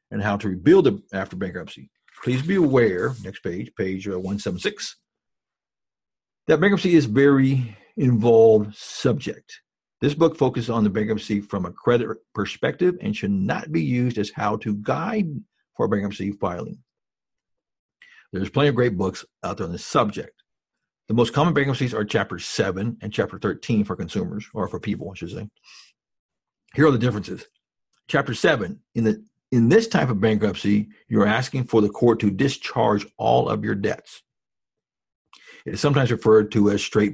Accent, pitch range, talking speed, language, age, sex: American, 105-135 Hz, 160 wpm, English, 50-69, male